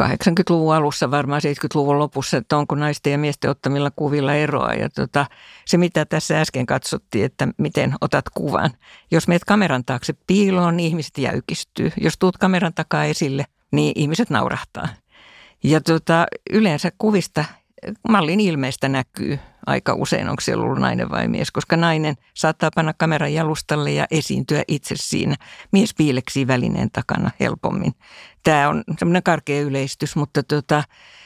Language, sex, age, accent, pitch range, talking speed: Finnish, female, 60-79, native, 140-175 Hz, 140 wpm